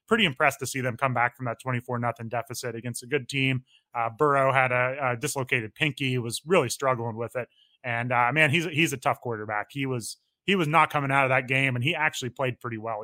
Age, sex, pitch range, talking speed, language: 20-39, male, 120-145 Hz, 245 wpm, English